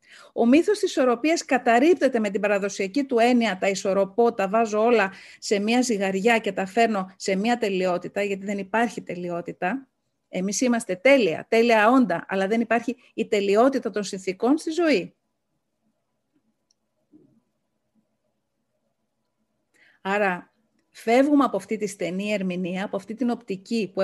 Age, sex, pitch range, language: 40-59, female, 190-245 Hz, Greek